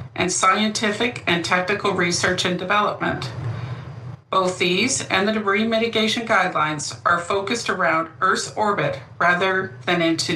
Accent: American